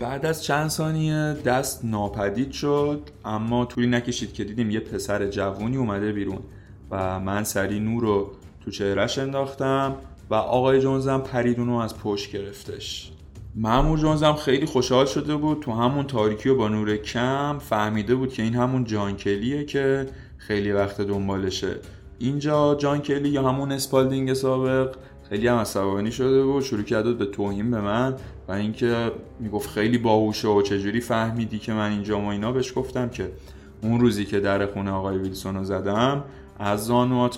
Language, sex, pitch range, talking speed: Persian, male, 100-130 Hz, 160 wpm